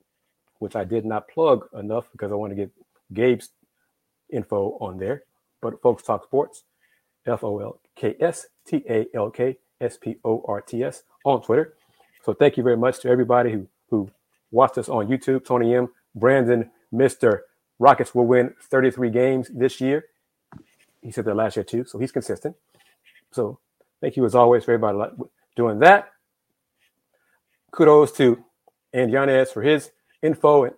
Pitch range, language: 115-135 Hz, English